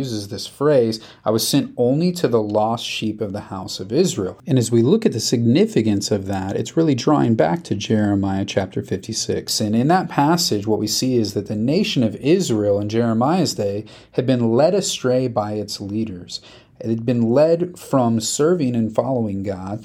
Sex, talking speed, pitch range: male, 195 wpm, 105-130 Hz